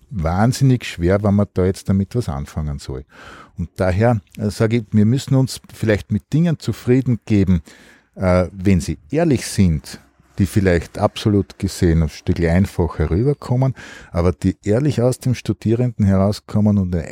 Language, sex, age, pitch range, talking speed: German, male, 50-69, 95-120 Hz, 155 wpm